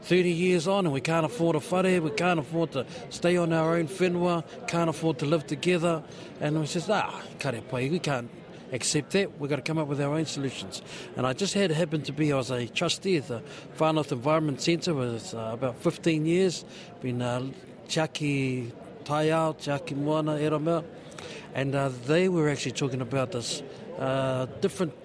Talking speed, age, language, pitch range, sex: 190 wpm, 60-79, English, 135-170 Hz, male